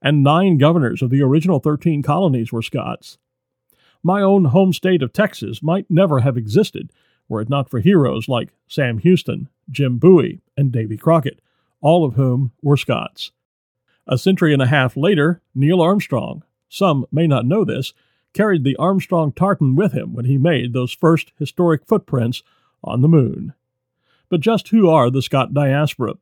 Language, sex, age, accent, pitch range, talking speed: English, male, 50-69, American, 130-175 Hz, 170 wpm